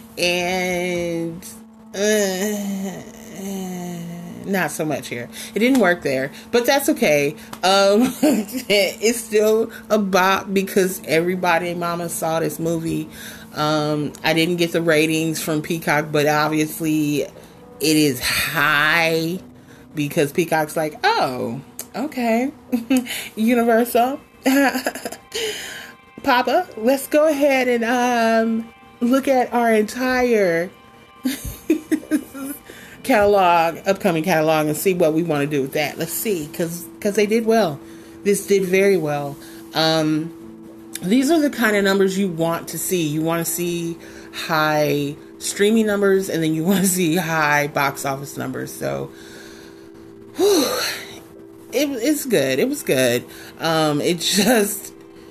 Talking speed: 125 wpm